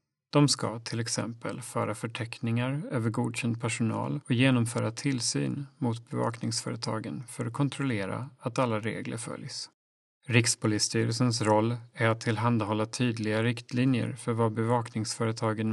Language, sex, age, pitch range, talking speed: Swedish, male, 30-49, 115-130 Hz, 120 wpm